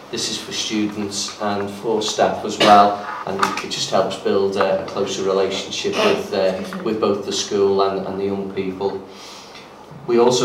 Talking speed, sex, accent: 170 wpm, male, British